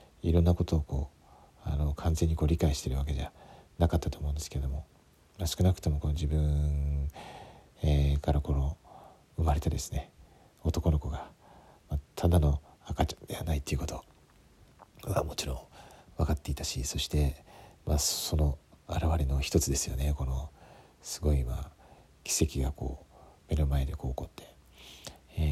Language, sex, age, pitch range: English, male, 40-59, 70-85 Hz